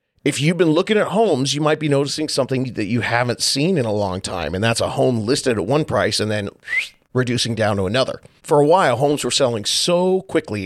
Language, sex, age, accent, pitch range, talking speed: English, male, 40-59, American, 115-155 Hz, 235 wpm